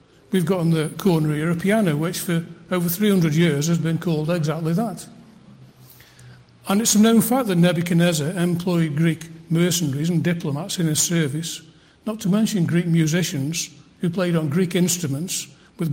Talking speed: 165 wpm